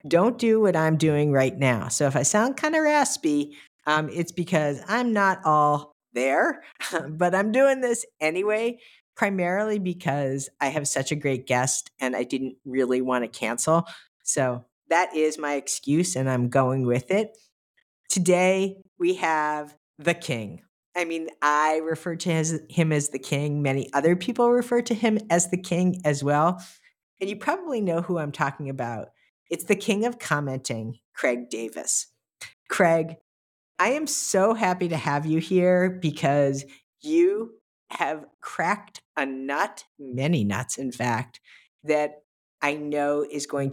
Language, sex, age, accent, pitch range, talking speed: English, female, 50-69, American, 135-180 Hz, 155 wpm